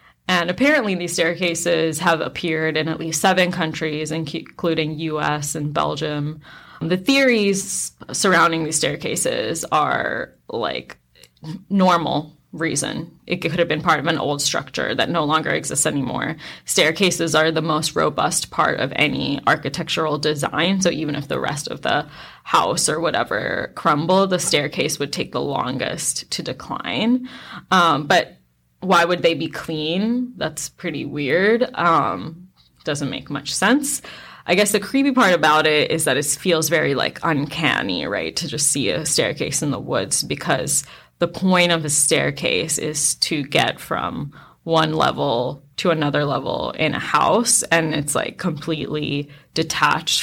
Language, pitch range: English, 150-175 Hz